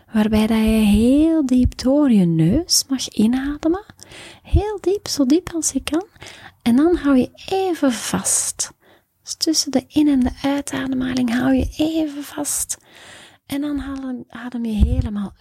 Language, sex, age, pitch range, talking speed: Dutch, female, 30-49, 205-290 Hz, 150 wpm